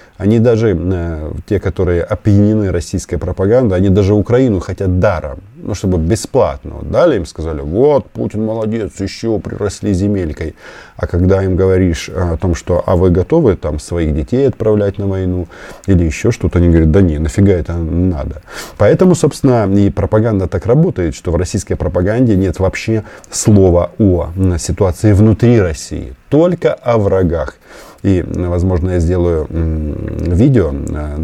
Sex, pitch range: male, 85-105 Hz